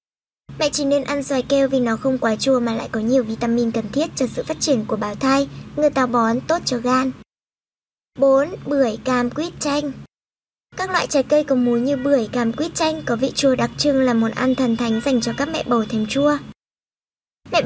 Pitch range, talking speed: 240-290 Hz, 220 wpm